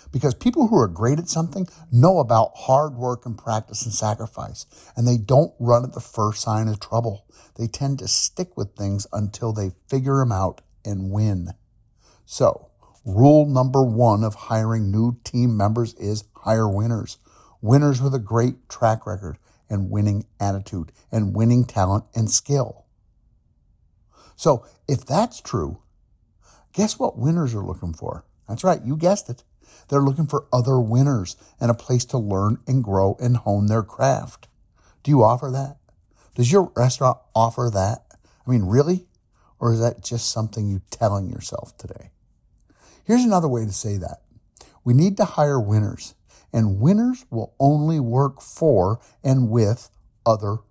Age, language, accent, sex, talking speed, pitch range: 50-69, English, American, male, 160 wpm, 105-135 Hz